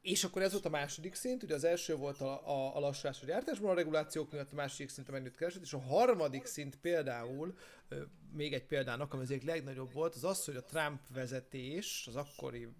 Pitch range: 130-160 Hz